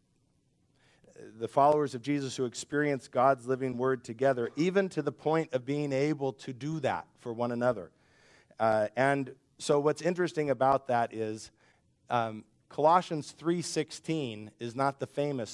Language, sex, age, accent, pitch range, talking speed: English, male, 50-69, American, 120-150 Hz, 145 wpm